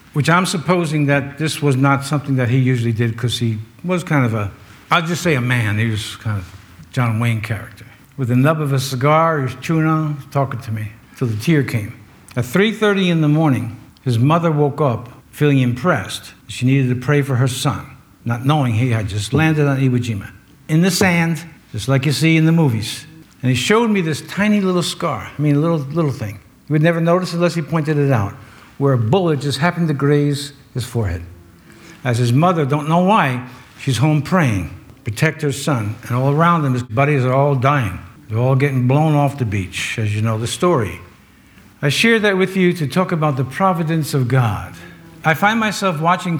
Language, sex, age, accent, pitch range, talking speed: English, male, 60-79, American, 120-165 Hz, 215 wpm